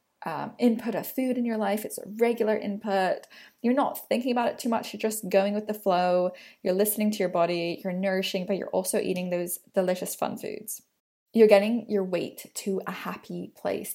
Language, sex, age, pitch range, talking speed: English, female, 10-29, 195-230 Hz, 200 wpm